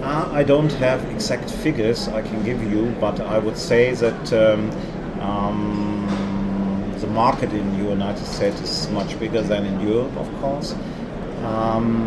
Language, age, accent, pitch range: English, 40-59, German, 105-140 Hz